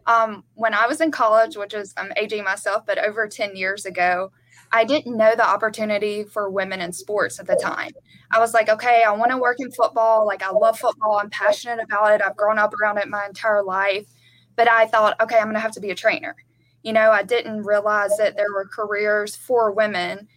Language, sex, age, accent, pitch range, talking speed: English, female, 20-39, American, 210-235 Hz, 225 wpm